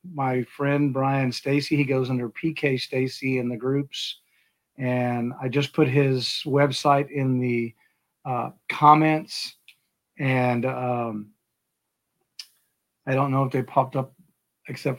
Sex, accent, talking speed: male, American, 130 wpm